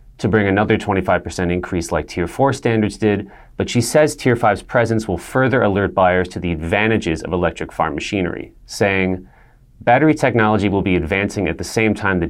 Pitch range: 90-115 Hz